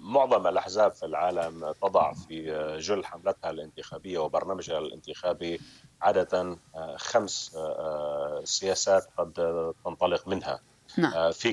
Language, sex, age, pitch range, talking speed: Arabic, male, 40-59, 85-95 Hz, 95 wpm